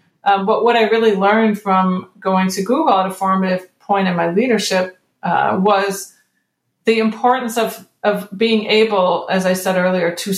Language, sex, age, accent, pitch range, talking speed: English, female, 40-59, American, 185-220 Hz, 175 wpm